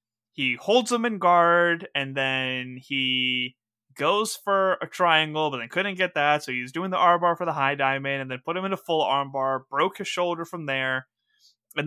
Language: English